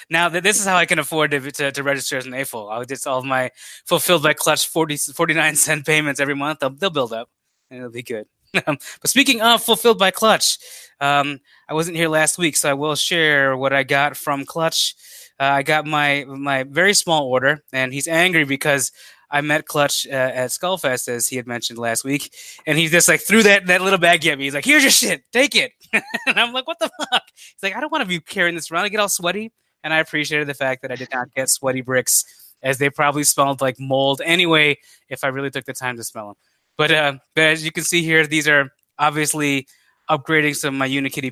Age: 20-39